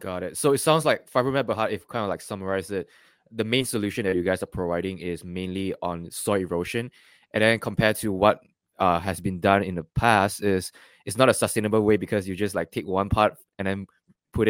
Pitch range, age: 90-110 Hz, 20-39